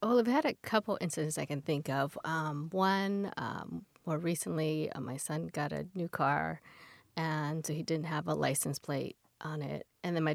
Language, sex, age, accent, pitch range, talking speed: English, female, 40-59, American, 150-175 Hz, 205 wpm